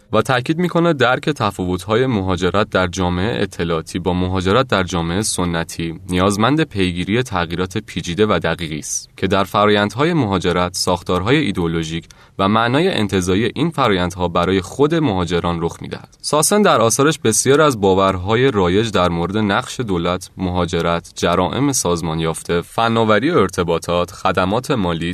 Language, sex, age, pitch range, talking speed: Persian, male, 20-39, 85-115 Hz, 135 wpm